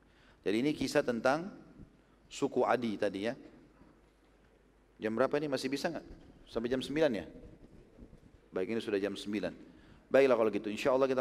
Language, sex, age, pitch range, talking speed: Indonesian, male, 40-59, 105-125 Hz, 155 wpm